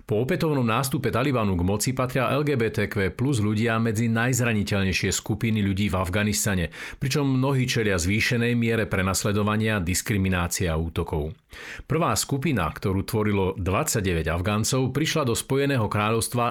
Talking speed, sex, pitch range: 125 wpm, male, 100-130 Hz